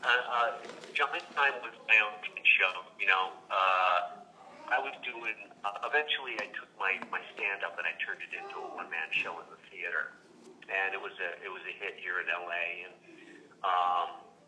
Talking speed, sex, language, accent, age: 195 wpm, male, English, American, 50-69